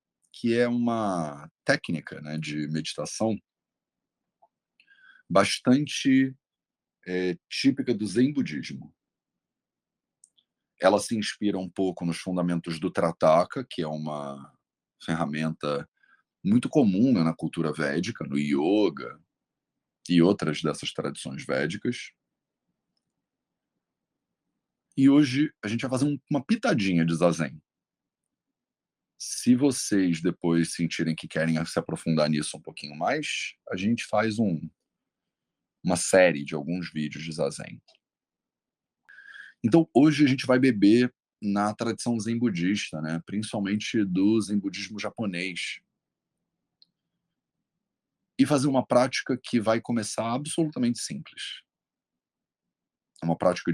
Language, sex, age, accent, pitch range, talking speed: English, male, 40-59, Brazilian, 80-120 Hz, 110 wpm